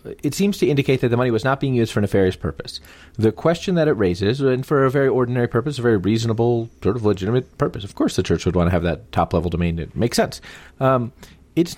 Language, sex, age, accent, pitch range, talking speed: English, male, 30-49, American, 95-125 Hz, 245 wpm